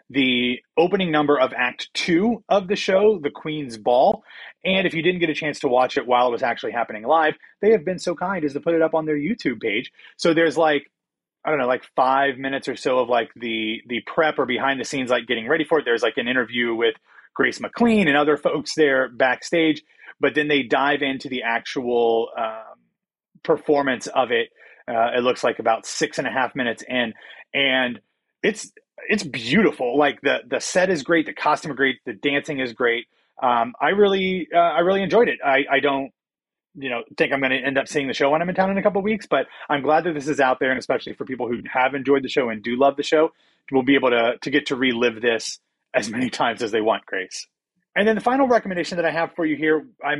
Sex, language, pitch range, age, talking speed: male, English, 130-170 Hz, 30-49, 235 wpm